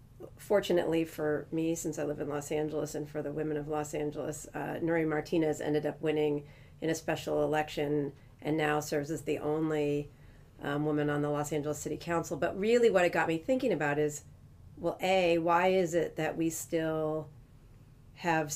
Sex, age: female, 40-59